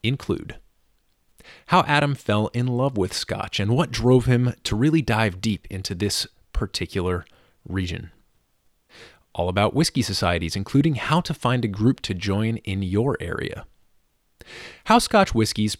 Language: English